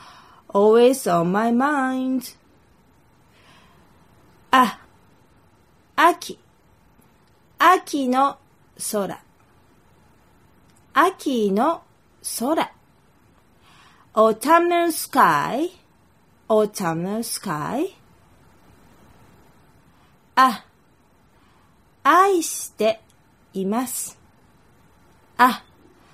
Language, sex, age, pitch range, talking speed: English, female, 30-49, 200-310 Hz, 50 wpm